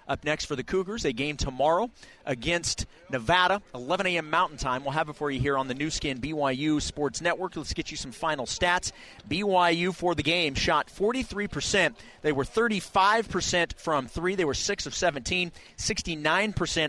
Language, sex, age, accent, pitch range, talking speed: English, male, 40-59, American, 145-180 Hz, 175 wpm